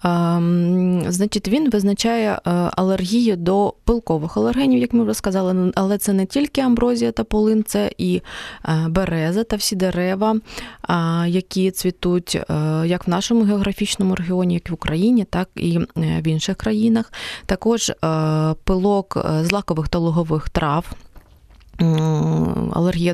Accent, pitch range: native, 175-210 Hz